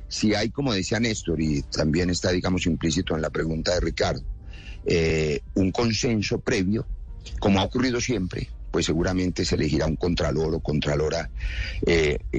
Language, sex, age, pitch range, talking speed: Spanish, male, 50-69, 85-110 Hz, 155 wpm